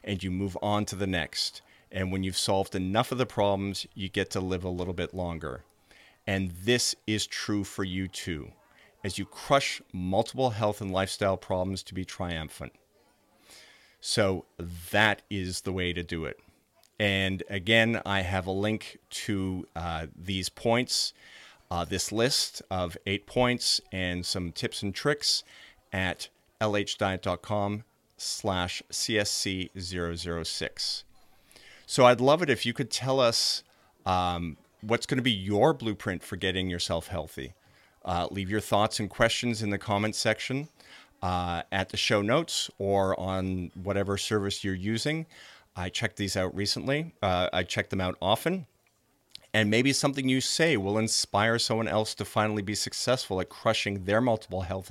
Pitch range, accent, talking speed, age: 95-110 Hz, American, 155 wpm, 40-59